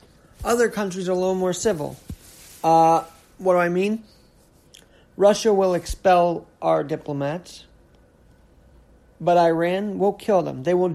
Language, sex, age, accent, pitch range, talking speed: English, male, 40-59, American, 170-210 Hz, 130 wpm